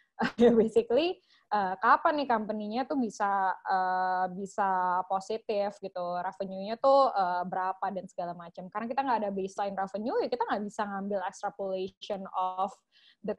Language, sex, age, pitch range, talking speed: Indonesian, female, 10-29, 195-240 Hz, 145 wpm